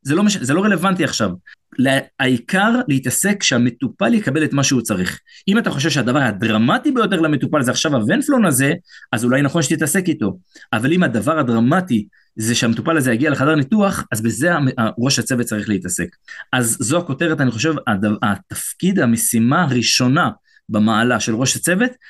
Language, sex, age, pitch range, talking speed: Hebrew, male, 30-49, 120-170 Hz, 160 wpm